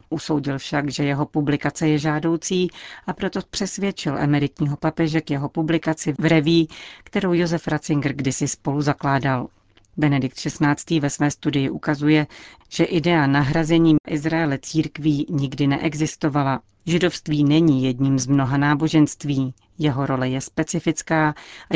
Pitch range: 145-165 Hz